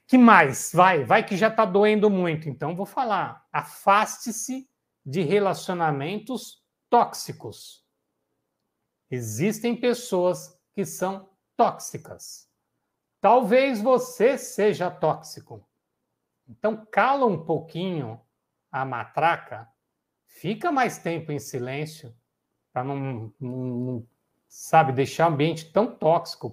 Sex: male